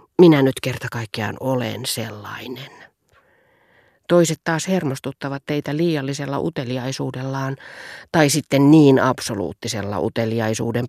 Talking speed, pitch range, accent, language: 95 wpm, 125-165 Hz, native, Finnish